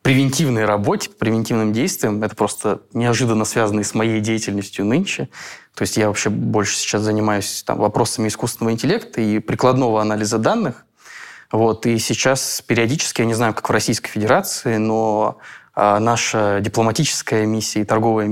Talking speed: 145 wpm